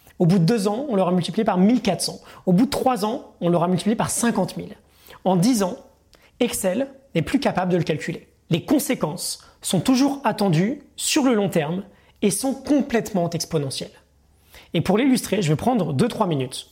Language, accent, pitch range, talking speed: French, French, 155-220 Hz, 190 wpm